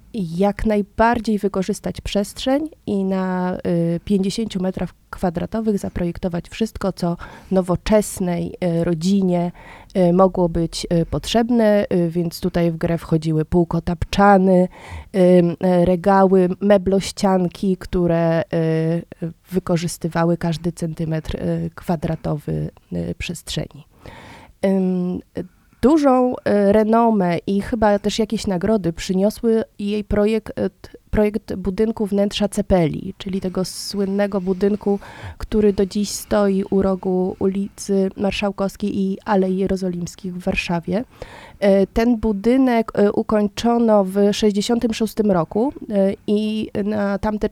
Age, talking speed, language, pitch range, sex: 30-49, 90 wpm, Polish, 180-210 Hz, female